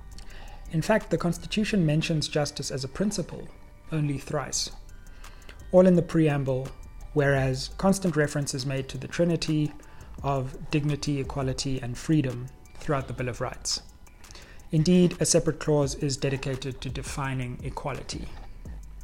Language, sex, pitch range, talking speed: English, male, 125-150 Hz, 130 wpm